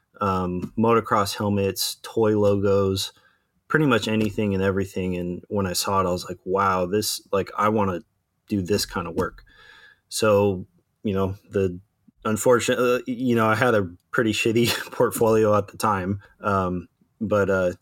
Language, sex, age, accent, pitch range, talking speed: English, male, 20-39, American, 95-110 Hz, 160 wpm